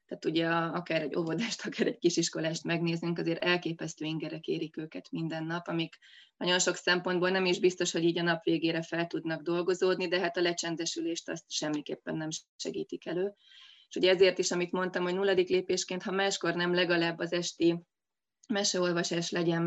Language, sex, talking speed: Hungarian, female, 175 wpm